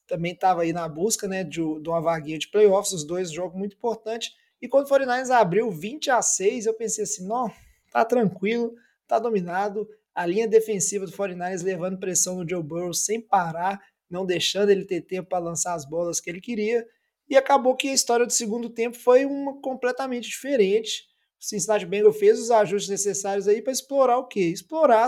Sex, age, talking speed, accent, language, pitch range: male, 20-39, 195 wpm, Brazilian, Portuguese, 190-240 Hz